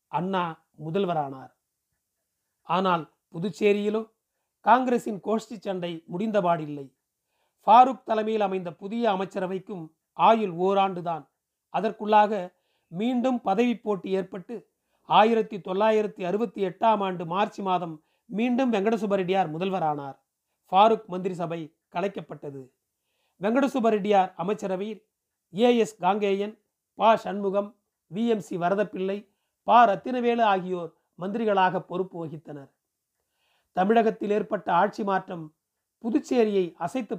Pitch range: 175-220 Hz